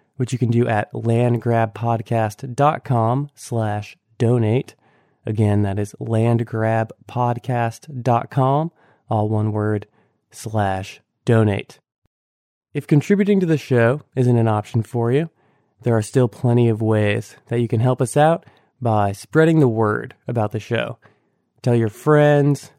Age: 20-39